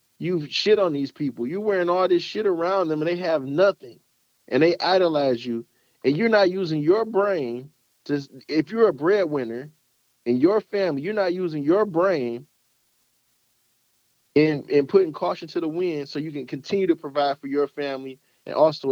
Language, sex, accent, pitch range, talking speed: English, male, American, 135-175 Hz, 185 wpm